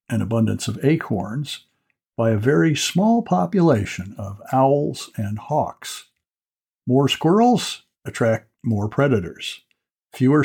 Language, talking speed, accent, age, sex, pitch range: English, 110 wpm, American, 60-79, male, 115-150 Hz